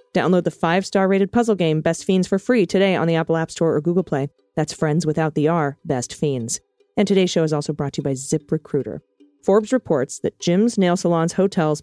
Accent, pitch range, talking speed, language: American, 155-195 Hz, 225 wpm, English